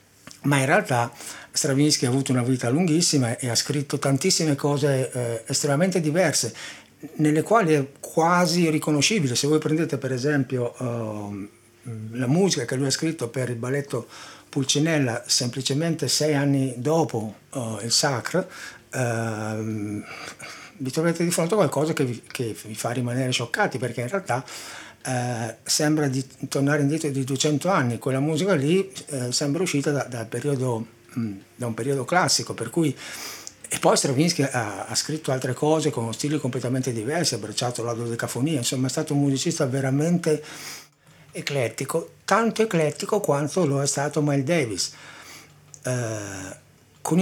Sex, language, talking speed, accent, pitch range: male, Italian, 150 wpm, native, 125-155 Hz